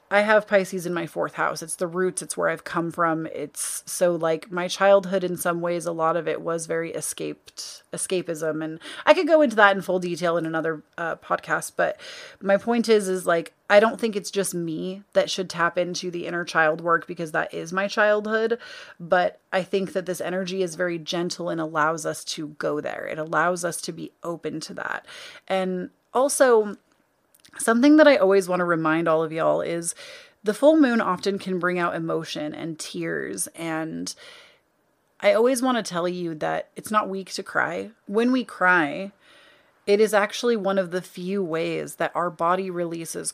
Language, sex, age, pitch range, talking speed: English, female, 30-49, 170-205 Hz, 200 wpm